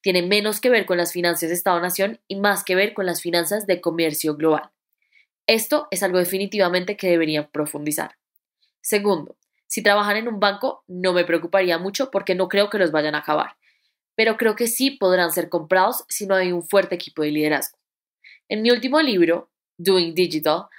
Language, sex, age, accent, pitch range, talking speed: Spanish, female, 10-29, Colombian, 175-220 Hz, 190 wpm